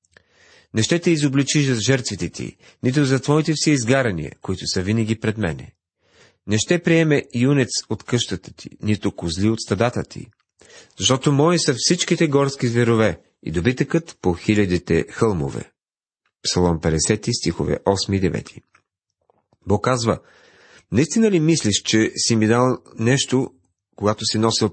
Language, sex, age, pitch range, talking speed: Bulgarian, male, 40-59, 105-140 Hz, 145 wpm